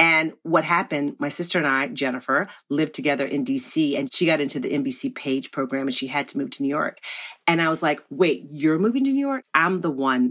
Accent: American